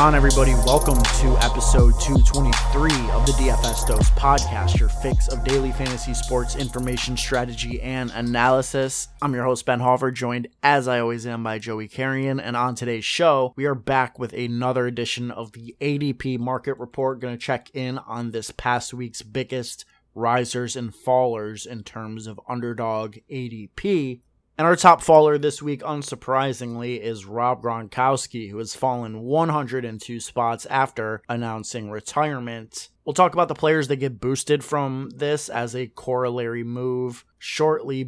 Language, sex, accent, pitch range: English, male, American, 120-135 Hz